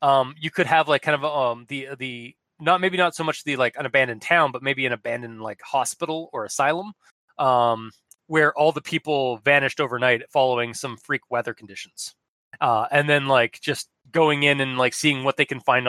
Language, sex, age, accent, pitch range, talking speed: English, male, 20-39, American, 125-155 Hz, 205 wpm